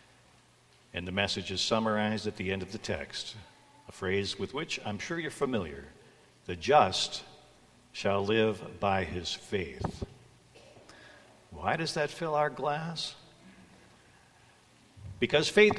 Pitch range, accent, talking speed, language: 100-130 Hz, American, 130 wpm, English